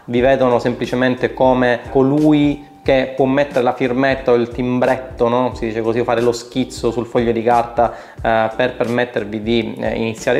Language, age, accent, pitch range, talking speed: Italian, 30-49, native, 120-145 Hz, 175 wpm